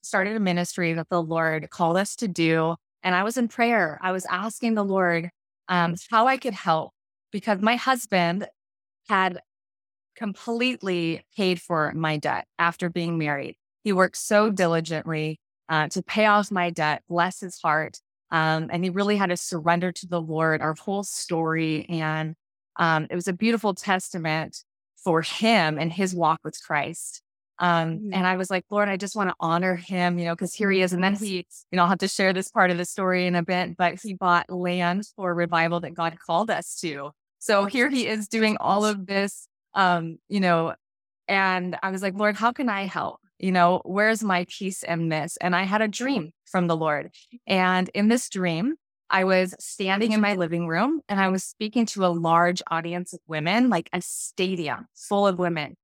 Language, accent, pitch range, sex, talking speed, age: English, American, 170-200 Hz, female, 200 wpm, 20-39